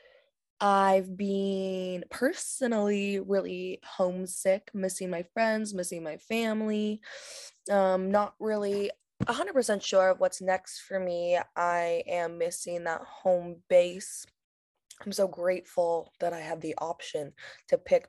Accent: American